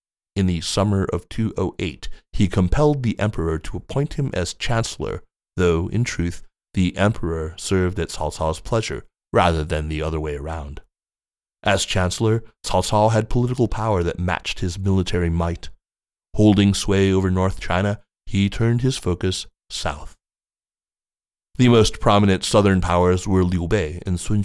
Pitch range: 85-105 Hz